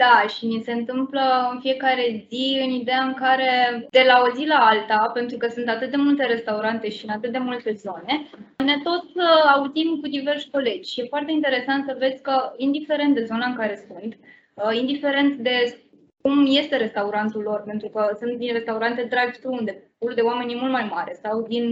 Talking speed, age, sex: 200 wpm, 20-39, female